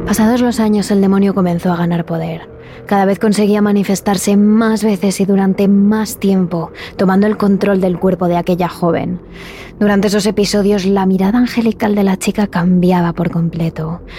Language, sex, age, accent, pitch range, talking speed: Spanish, female, 20-39, Spanish, 180-210 Hz, 165 wpm